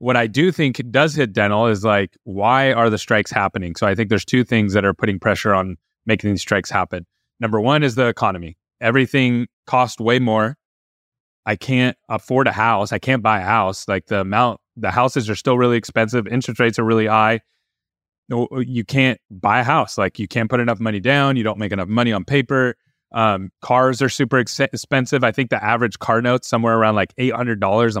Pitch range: 110-135 Hz